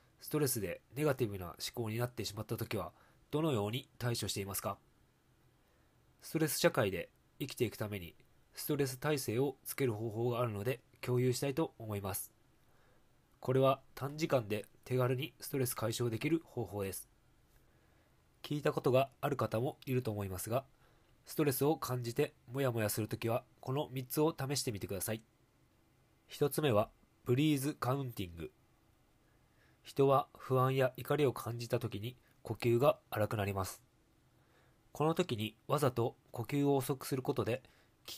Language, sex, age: Japanese, male, 20-39